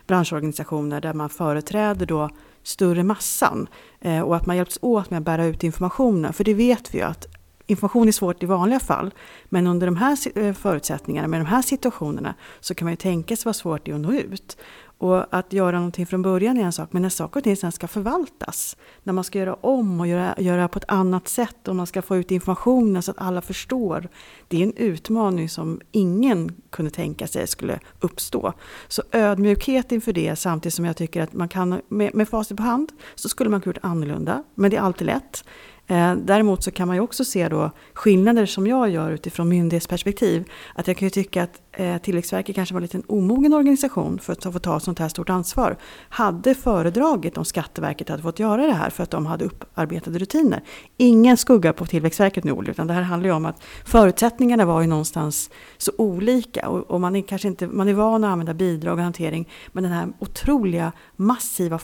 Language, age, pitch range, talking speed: Swedish, 40-59, 170-215 Hz, 205 wpm